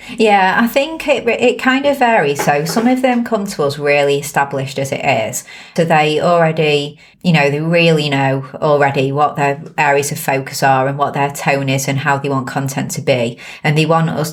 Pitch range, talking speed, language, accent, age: 140-165 Hz, 215 wpm, English, British, 30-49